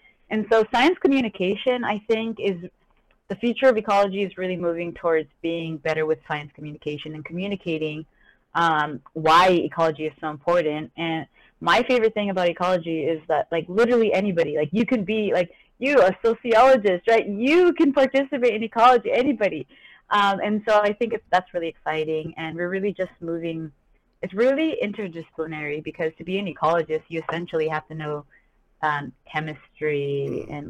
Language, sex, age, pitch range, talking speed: English, female, 20-39, 160-205 Hz, 165 wpm